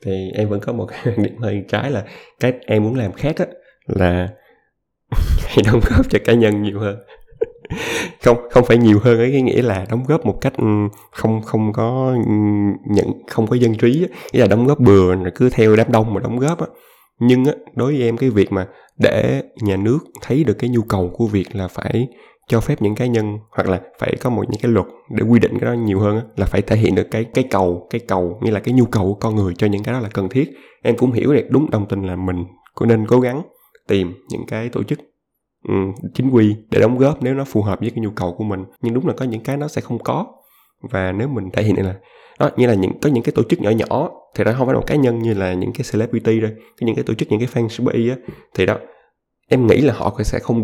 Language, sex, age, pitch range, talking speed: Vietnamese, male, 20-39, 100-125 Hz, 255 wpm